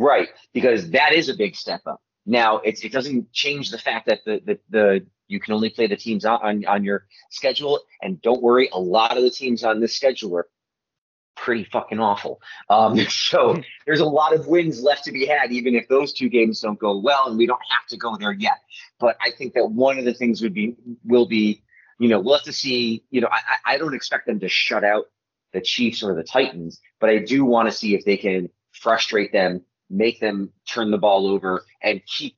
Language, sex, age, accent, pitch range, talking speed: English, male, 30-49, American, 100-120 Hz, 230 wpm